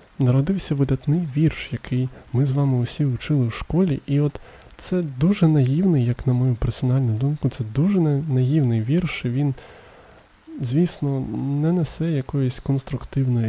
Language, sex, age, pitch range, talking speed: Ukrainian, male, 20-39, 115-145 Hz, 140 wpm